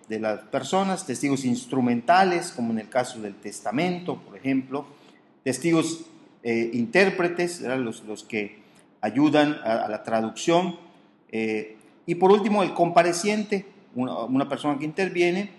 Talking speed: 135 wpm